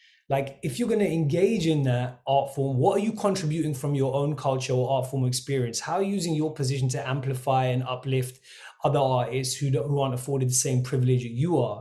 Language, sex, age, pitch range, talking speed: English, male, 20-39, 125-150 Hz, 230 wpm